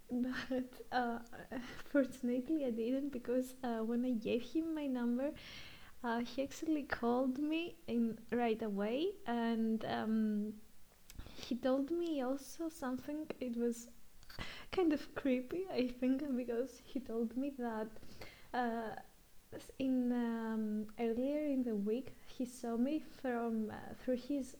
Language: English